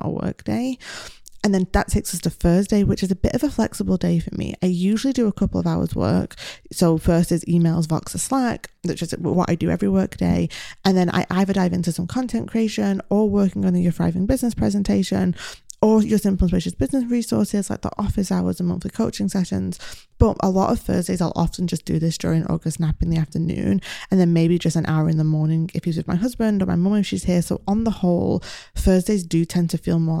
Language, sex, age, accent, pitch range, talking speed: English, female, 20-39, British, 165-205 Hz, 240 wpm